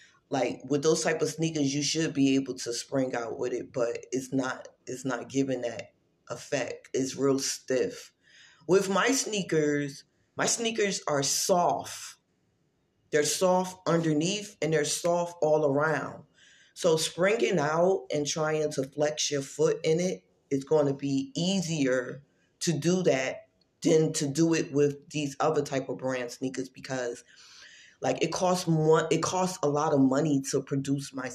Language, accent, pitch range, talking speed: English, American, 140-180 Hz, 165 wpm